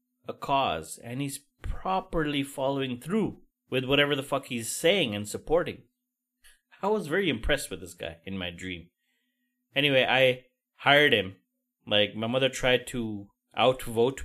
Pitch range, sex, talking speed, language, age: 110-170 Hz, male, 145 wpm, English, 30-49